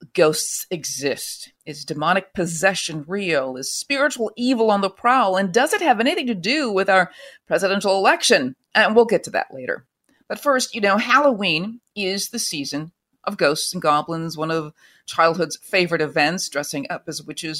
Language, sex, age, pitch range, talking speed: English, female, 40-59, 155-220 Hz, 170 wpm